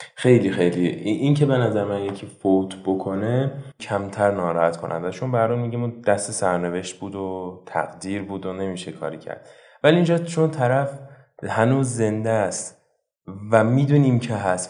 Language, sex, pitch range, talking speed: Persian, male, 100-140 Hz, 155 wpm